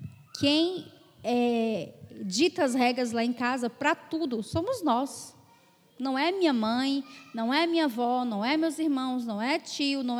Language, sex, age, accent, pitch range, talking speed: Portuguese, female, 10-29, Brazilian, 240-310 Hz, 160 wpm